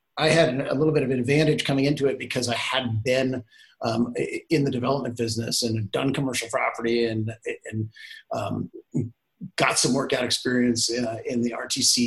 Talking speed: 170 wpm